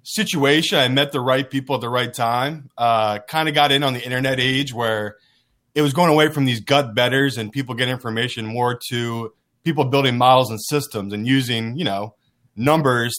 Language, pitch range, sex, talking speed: English, 120-145 Hz, male, 195 wpm